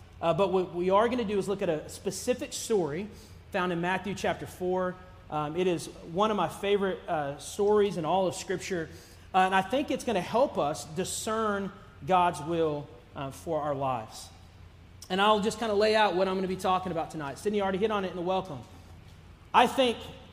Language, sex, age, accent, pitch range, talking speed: English, male, 30-49, American, 150-210 Hz, 215 wpm